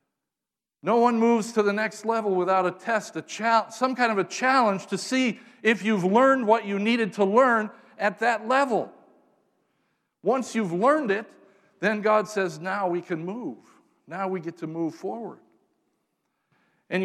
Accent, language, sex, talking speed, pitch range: American, English, male, 160 wpm, 165-225 Hz